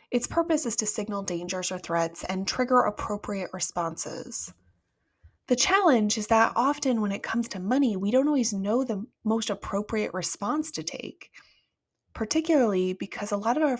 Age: 20-39